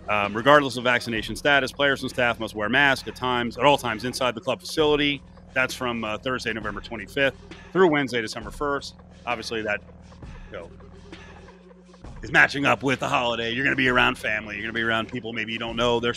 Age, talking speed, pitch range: 30-49, 210 wpm, 115-150 Hz